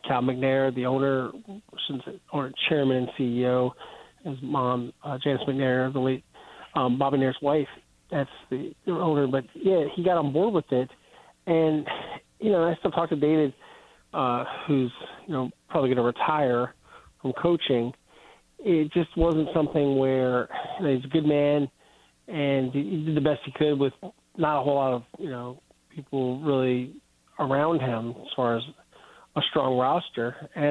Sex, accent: male, American